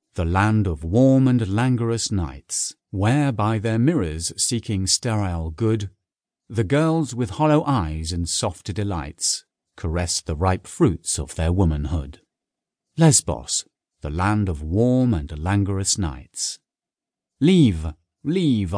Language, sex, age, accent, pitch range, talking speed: English, male, 50-69, British, 85-120 Hz, 125 wpm